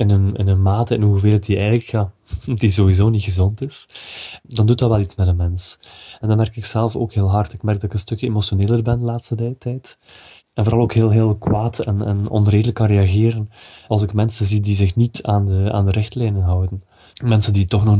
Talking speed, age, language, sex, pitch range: 235 wpm, 20-39, Dutch, male, 100-110 Hz